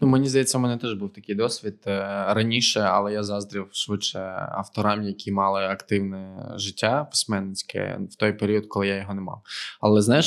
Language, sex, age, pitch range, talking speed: Ukrainian, male, 20-39, 100-110 Hz, 175 wpm